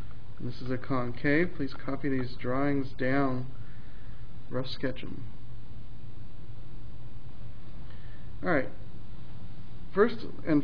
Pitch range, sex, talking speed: 120-150 Hz, male, 85 wpm